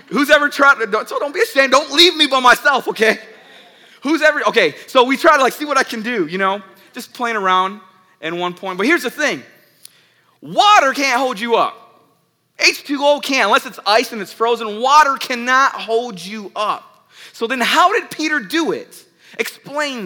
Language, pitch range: English, 215-295 Hz